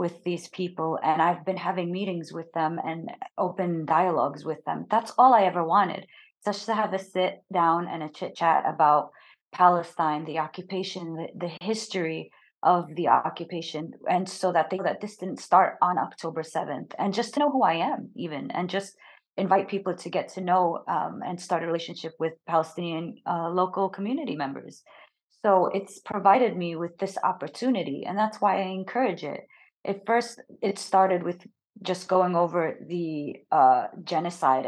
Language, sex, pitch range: English, female, 160-190 Hz